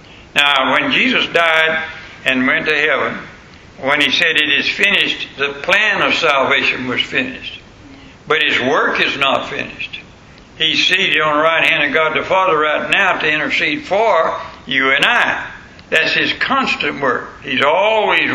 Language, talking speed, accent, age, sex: English, 165 wpm, American, 60-79, male